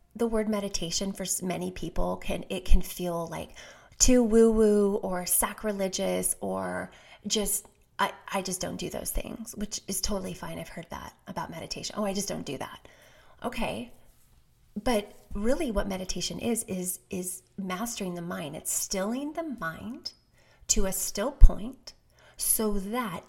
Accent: American